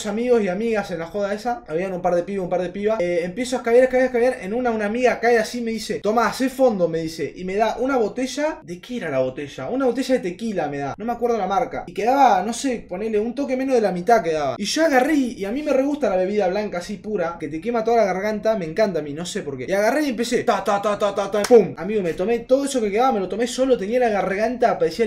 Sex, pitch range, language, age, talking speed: male, 200-255 Hz, Spanish, 20-39, 290 wpm